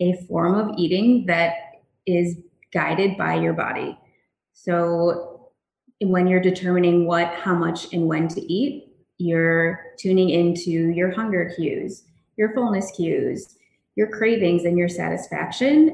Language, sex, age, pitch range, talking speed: English, female, 20-39, 165-185 Hz, 130 wpm